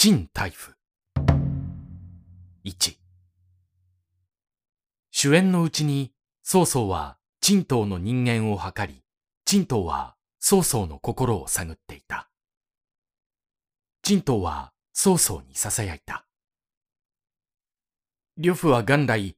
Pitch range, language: 95-140 Hz, Japanese